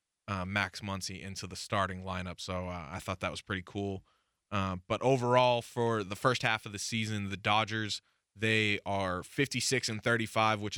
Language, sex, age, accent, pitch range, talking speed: English, male, 20-39, American, 95-110 Hz, 185 wpm